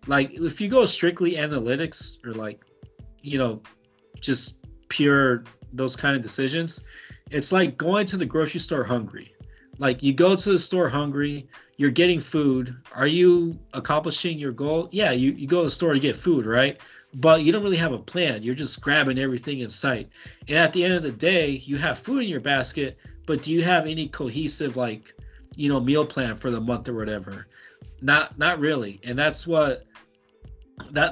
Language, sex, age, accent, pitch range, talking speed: English, male, 30-49, American, 125-155 Hz, 190 wpm